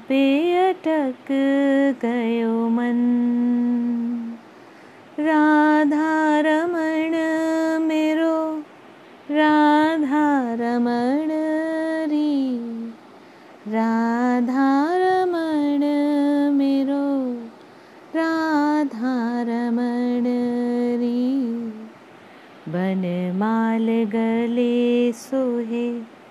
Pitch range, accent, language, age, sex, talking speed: 240-310 Hz, native, Hindi, 20-39, female, 35 wpm